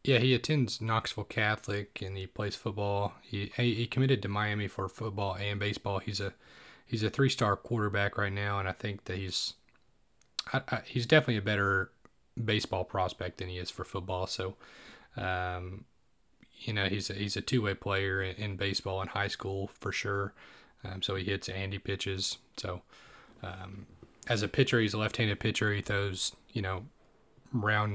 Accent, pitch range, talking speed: American, 100-110 Hz, 180 wpm